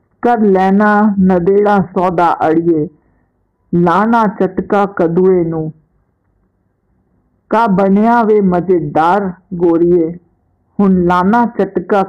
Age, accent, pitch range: 50-69, native, 165-205 Hz